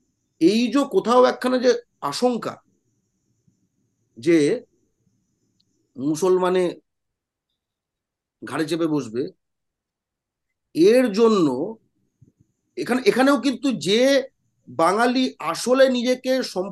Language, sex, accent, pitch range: Bengali, male, native, 185-255 Hz